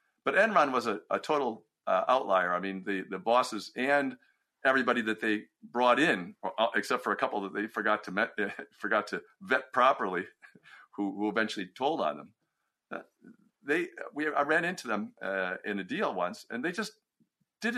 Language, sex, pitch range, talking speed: English, male, 110-170 Hz, 185 wpm